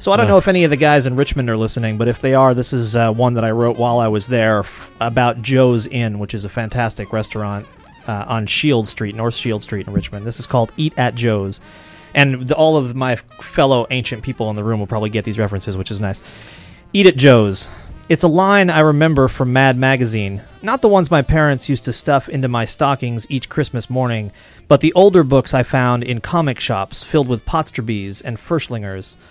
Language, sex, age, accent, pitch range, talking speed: English, male, 30-49, American, 115-150 Hz, 225 wpm